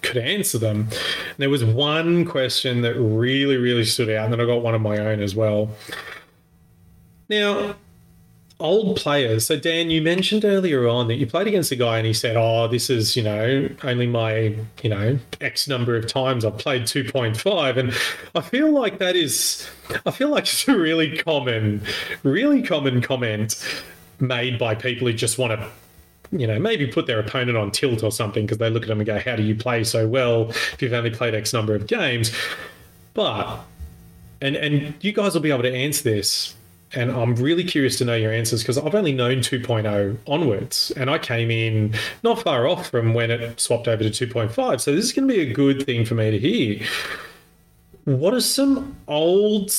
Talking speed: 200 wpm